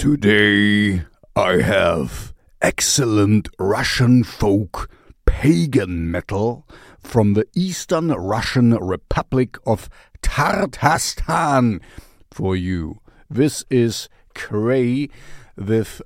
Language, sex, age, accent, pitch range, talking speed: English, male, 50-69, German, 95-125 Hz, 80 wpm